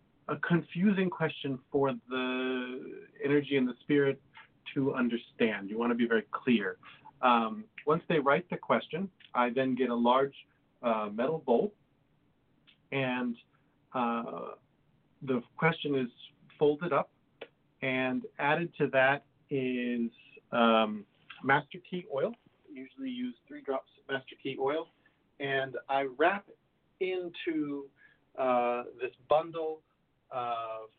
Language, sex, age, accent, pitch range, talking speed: English, male, 40-59, American, 120-150 Hz, 120 wpm